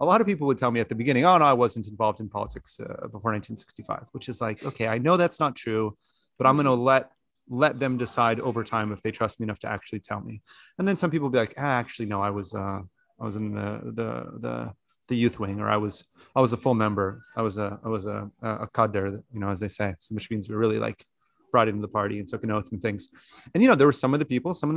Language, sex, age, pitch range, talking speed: English, male, 30-49, 105-130 Hz, 285 wpm